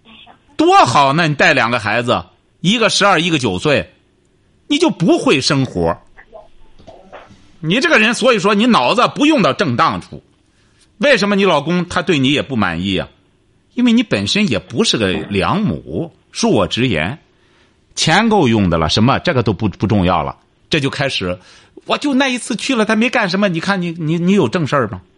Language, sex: Chinese, male